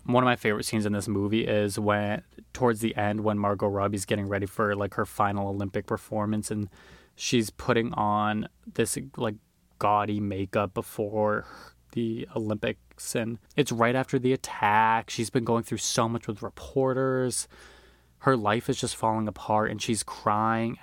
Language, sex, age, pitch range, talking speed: English, male, 20-39, 105-115 Hz, 165 wpm